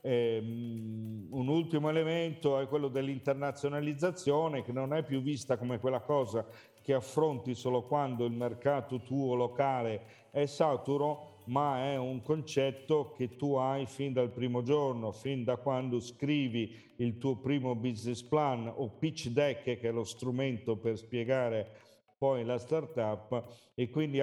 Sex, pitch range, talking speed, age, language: male, 115-140 Hz, 145 wpm, 50-69, Italian